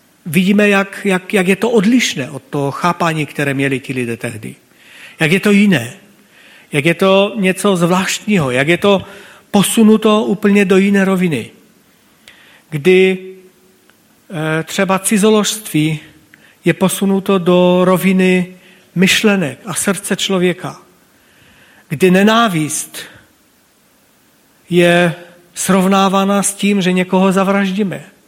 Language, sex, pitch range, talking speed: Czech, male, 160-195 Hz, 110 wpm